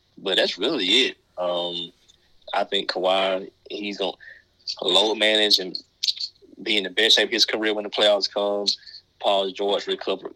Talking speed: 170 wpm